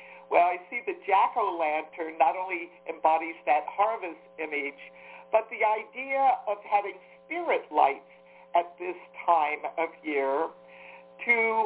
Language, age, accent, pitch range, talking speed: English, 60-79, American, 145-205 Hz, 125 wpm